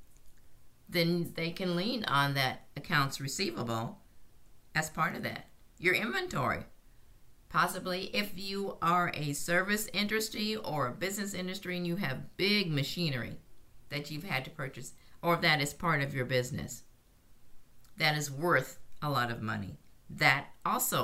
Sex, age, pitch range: female, 50-69, 125-180 Hz